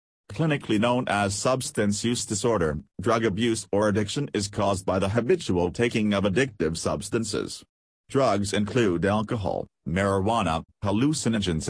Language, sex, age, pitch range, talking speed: English, male, 40-59, 95-120 Hz, 125 wpm